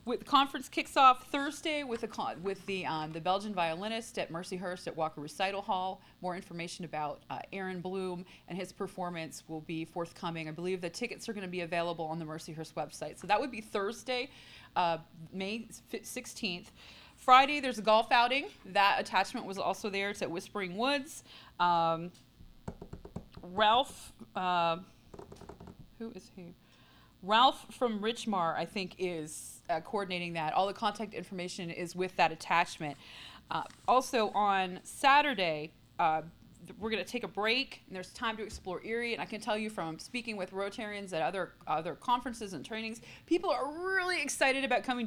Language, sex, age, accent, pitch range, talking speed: English, female, 30-49, American, 180-235 Hz, 170 wpm